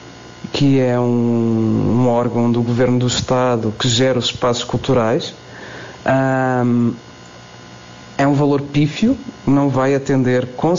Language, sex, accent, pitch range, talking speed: Portuguese, male, Portuguese, 120-145 Hz, 130 wpm